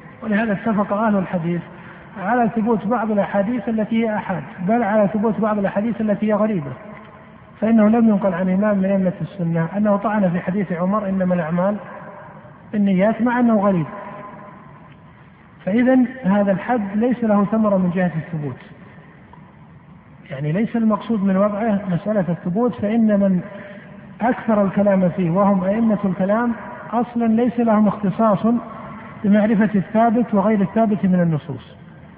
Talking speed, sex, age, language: 135 wpm, male, 50-69, Arabic